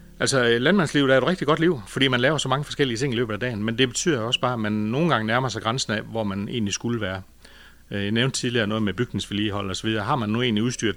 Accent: native